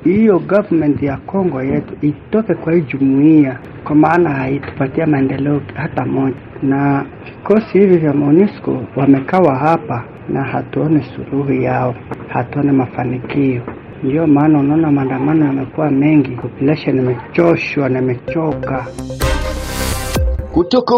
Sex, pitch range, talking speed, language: male, 140-200 Hz, 110 wpm, Swahili